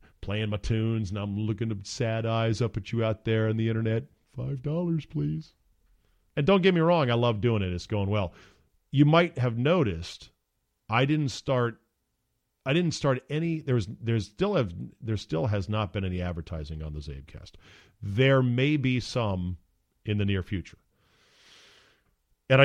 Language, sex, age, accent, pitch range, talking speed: English, male, 40-59, American, 95-130 Hz, 170 wpm